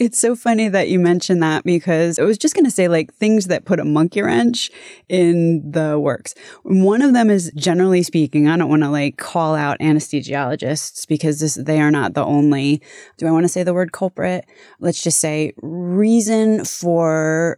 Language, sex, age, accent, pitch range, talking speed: English, female, 20-39, American, 155-185 Hz, 195 wpm